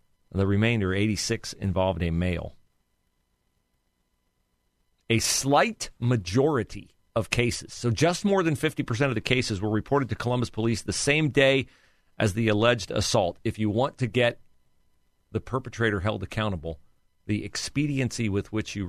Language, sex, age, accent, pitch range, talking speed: English, male, 40-59, American, 85-120 Hz, 145 wpm